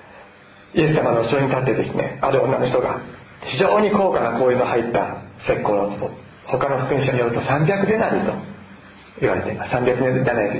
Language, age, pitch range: Japanese, 40-59, 115-190 Hz